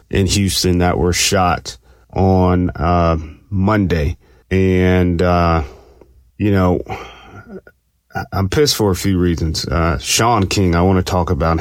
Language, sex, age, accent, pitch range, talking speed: English, male, 30-49, American, 85-95 Hz, 135 wpm